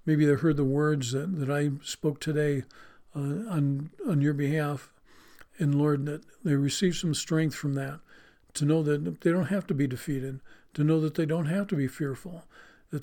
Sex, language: male, English